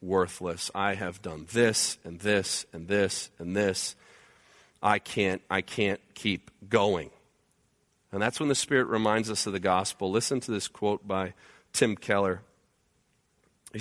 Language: English